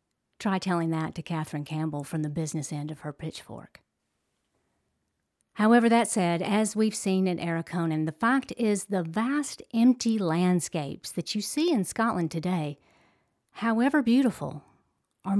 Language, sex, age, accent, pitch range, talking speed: English, female, 50-69, American, 160-220 Hz, 145 wpm